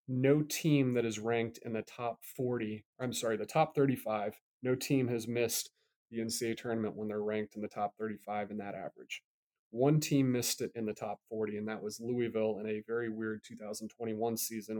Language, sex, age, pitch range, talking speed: English, male, 30-49, 110-130 Hz, 200 wpm